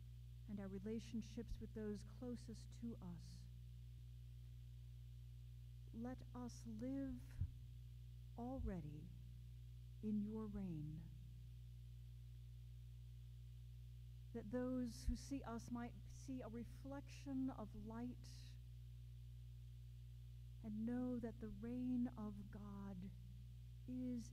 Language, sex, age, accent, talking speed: English, female, 50-69, American, 85 wpm